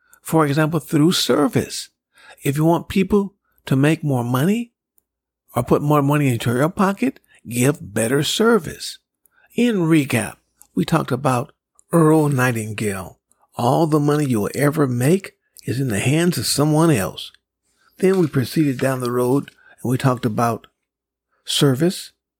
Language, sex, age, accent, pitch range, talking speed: English, male, 60-79, American, 125-165 Hz, 145 wpm